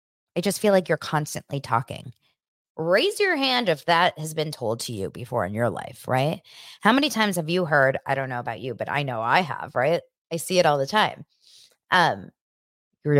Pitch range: 140-190 Hz